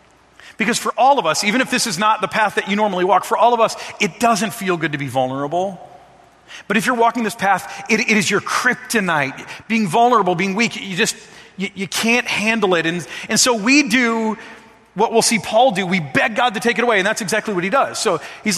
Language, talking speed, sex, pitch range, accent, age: English, 240 wpm, male, 170-245 Hz, American, 30-49